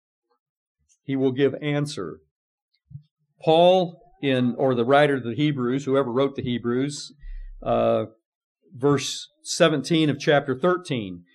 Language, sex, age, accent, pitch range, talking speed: English, male, 50-69, American, 150-205 Hz, 115 wpm